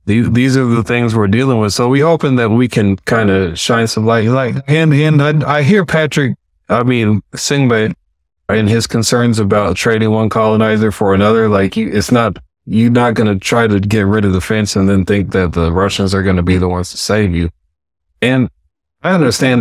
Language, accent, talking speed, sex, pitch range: English, American, 215 wpm, male, 90-110 Hz